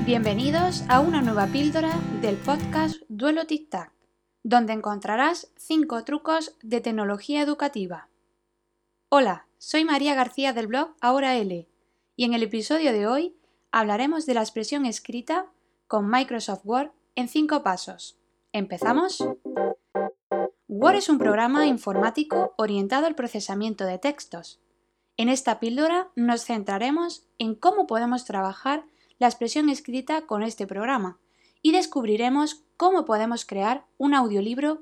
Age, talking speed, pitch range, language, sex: 20-39, 130 wpm, 205-295 Hz, Spanish, female